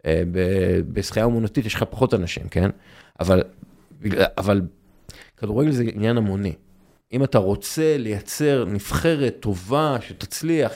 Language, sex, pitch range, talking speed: Hebrew, male, 110-160 Hz, 115 wpm